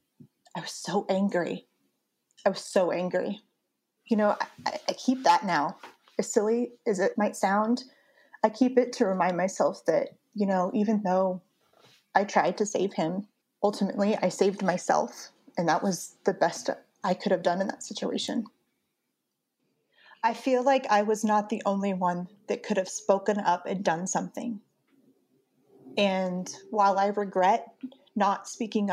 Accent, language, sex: American, English, female